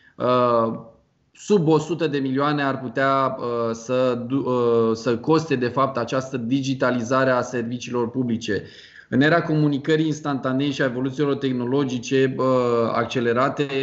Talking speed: 110 wpm